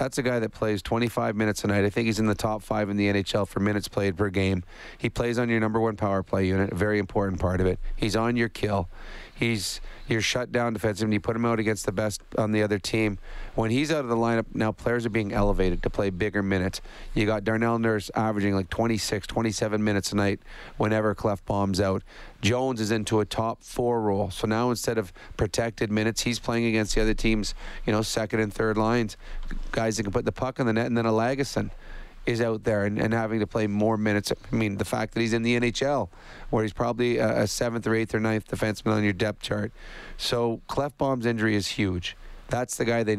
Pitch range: 105-115 Hz